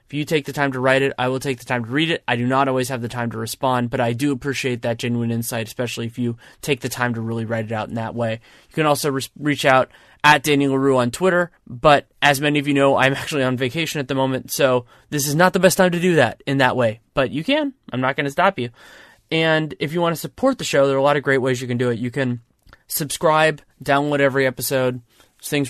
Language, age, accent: English, 20-39, American